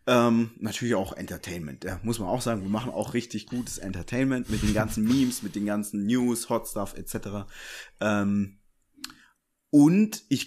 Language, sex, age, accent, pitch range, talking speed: German, male, 30-49, German, 110-150 Hz, 165 wpm